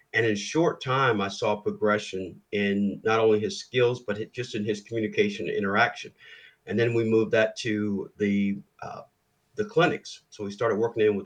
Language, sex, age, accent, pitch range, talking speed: English, male, 50-69, American, 105-120 Hz, 185 wpm